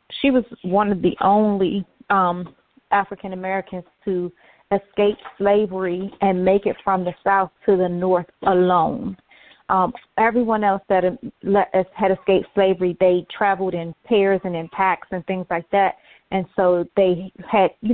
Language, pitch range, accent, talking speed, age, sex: English, 180-205 Hz, American, 150 wpm, 30-49, female